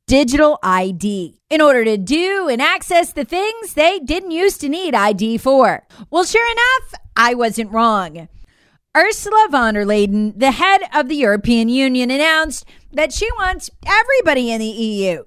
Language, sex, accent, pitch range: English, female, American, 210-330 Hz